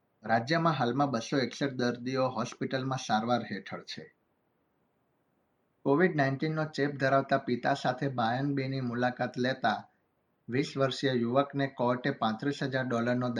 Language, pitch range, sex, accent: Gujarati, 120-135 Hz, male, native